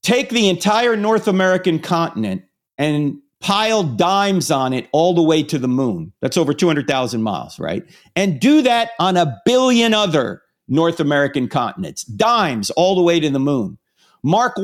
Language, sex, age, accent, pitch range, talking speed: English, male, 50-69, American, 150-190 Hz, 165 wpm